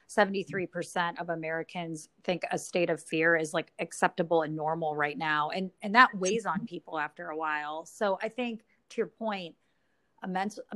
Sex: female